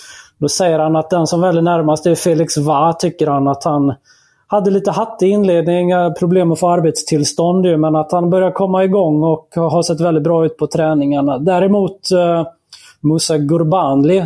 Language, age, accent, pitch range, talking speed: Swedish, 30-49, native, 150-175 Hz, 180 wpm